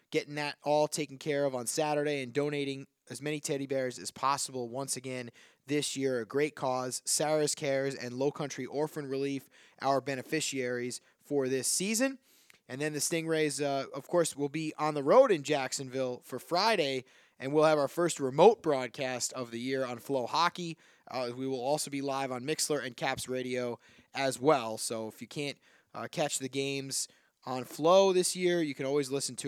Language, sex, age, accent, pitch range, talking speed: English, male, 20-39, American, 130-150 Hz, 190 wpm